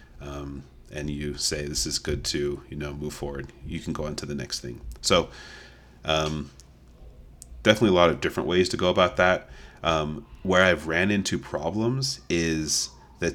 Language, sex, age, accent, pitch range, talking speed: English, male, 30-49, American, 75-90 Hz, 180 wpm